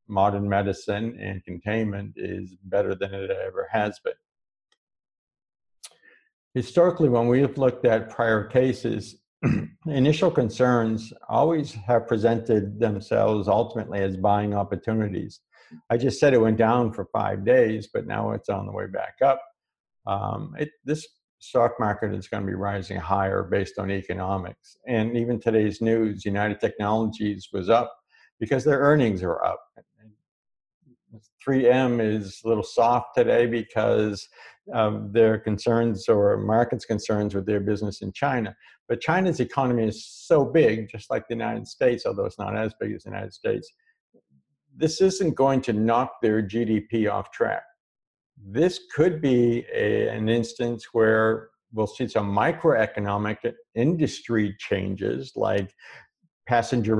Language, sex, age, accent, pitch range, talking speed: English, male, 50-69, American, 105-125 Hz, 140 wpm